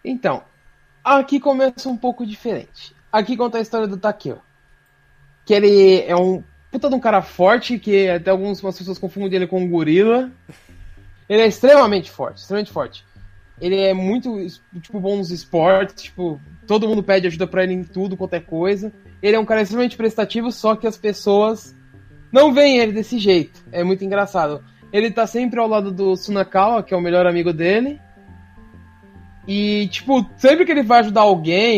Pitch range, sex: 185-235 Hz, male